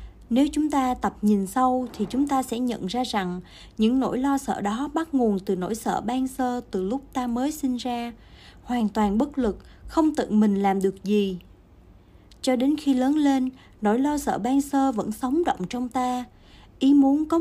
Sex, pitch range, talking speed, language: female, 210-275 Hz, 205 wpm, Vietnamese